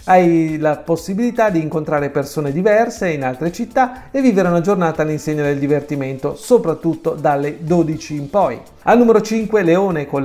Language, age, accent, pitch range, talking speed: Italian, 40-59, native, 150-195 Hz, 160 wpm